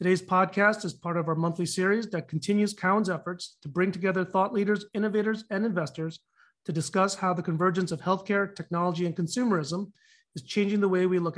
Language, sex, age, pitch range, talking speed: English, male, 30-49, 170-195 Hz, 190 wpm